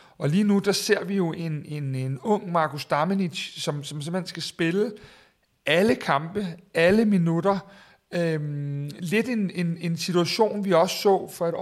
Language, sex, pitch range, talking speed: Danish, male, 155-195 Hz, 170 wpm